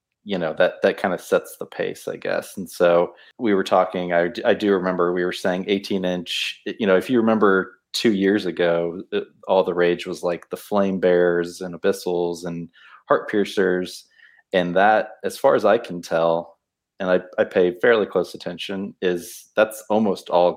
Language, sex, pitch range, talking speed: English, male, 85-95 Hz, 195 wpm